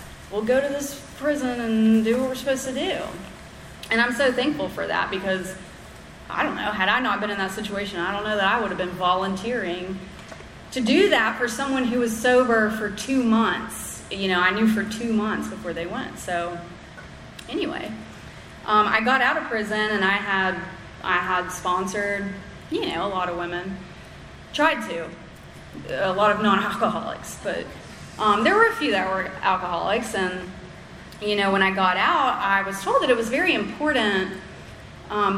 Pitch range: 185-235 Hz